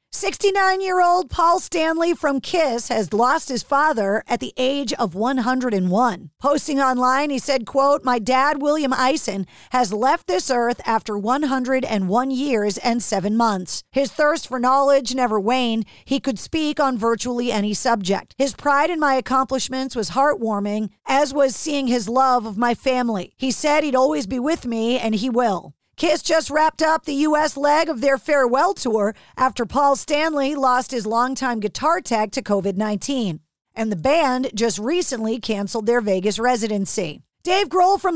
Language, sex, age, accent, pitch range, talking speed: English, female, 40-59, American, 230-300 Hz, 165 wpm